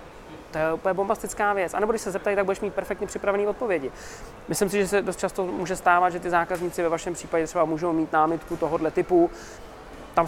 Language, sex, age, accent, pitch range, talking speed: Czech, male, 20-39, native, 165-200 Hz, 215 wpm